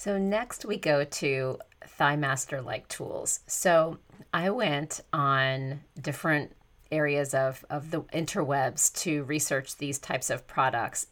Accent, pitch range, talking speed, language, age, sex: American, 140-160 Hz, 135 wpm, English, 40-59, female